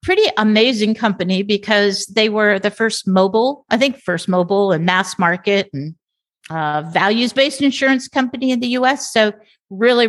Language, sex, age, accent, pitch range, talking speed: English, female, 50-69, American, 185-230 Hz, 155 wpm